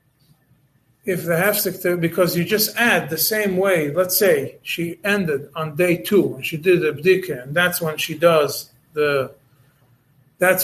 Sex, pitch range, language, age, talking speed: male, 145-195 Hz, English, 40-59, 160 wpm